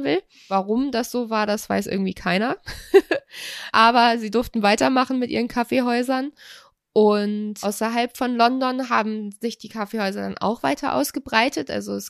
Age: 20-39